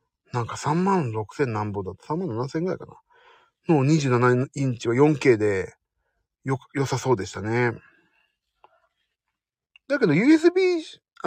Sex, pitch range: male, 115-185 Hz